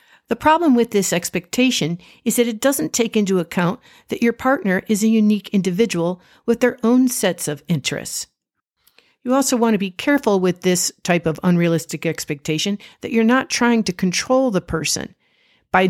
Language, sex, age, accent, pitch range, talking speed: English, female, 50-69, American, 175-235 Hz, 175 wpm